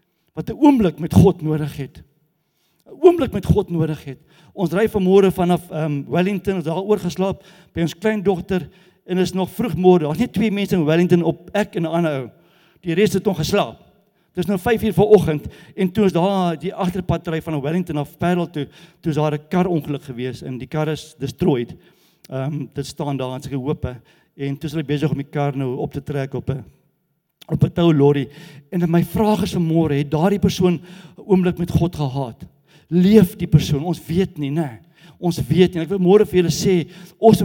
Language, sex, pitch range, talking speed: English, male, 155-190 Hz, 205 wpm